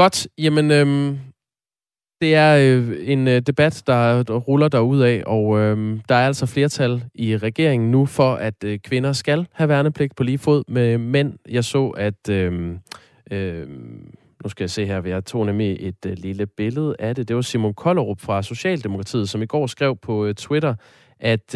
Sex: male